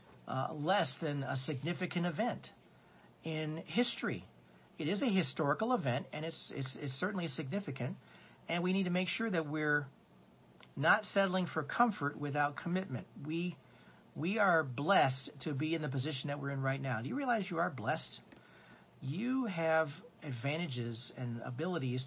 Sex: male